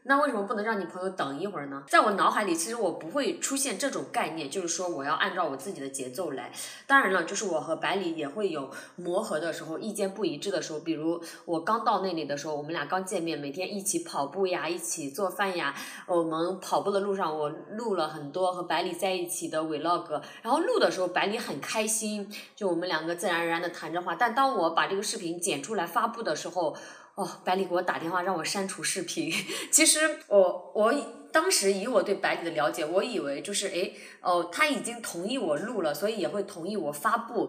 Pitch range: 165-225 Hz